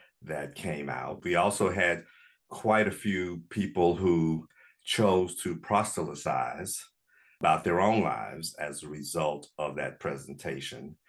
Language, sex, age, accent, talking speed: English, male, 50-69, American, 130 wpm